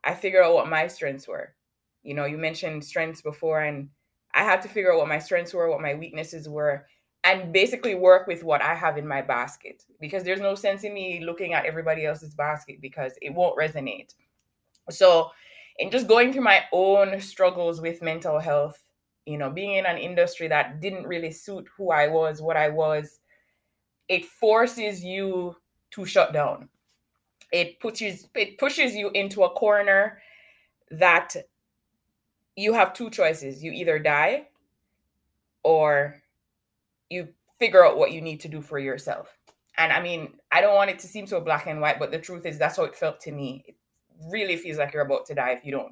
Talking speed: 190 wpm